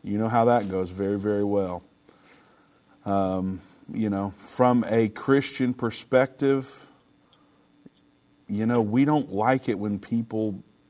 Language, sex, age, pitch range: English, male, 50-69, 100-120 Hz